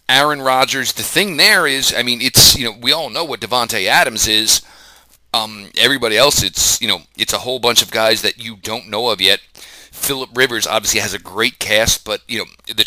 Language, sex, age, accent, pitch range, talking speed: English, male, 40-59, American, 110-135 Hz, 220 wpm